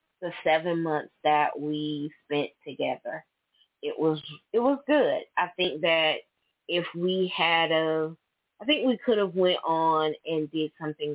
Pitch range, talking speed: 150-175 Hz, 155 wpm